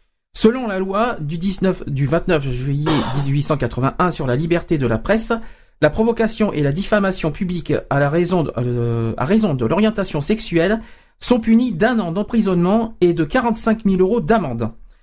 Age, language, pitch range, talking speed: 50-69, French, 150-210 Hz, 170 wpm